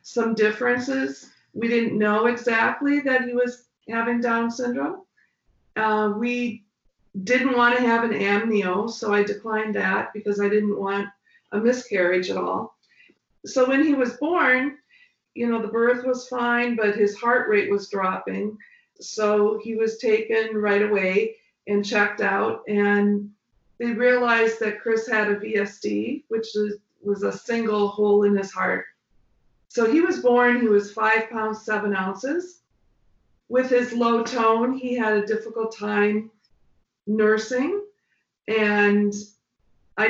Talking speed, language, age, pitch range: 145 wpm, English, 50-69, 205-240 Hz